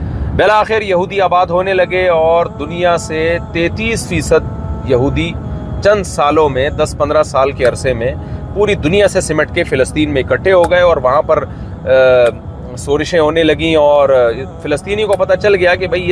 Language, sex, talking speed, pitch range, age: Urdu, male, 165 wpm, 130-170 Hz, 30-49